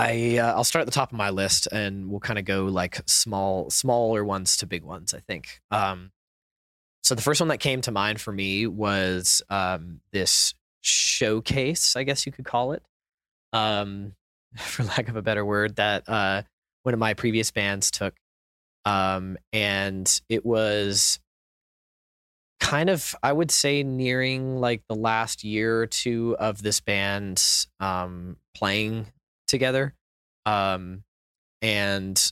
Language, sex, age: English, male, 20-39